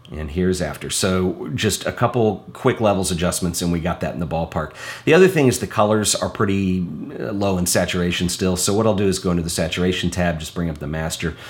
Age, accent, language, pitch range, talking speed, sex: 40-59, American, English, 85-100 Hz, 230 wpm, male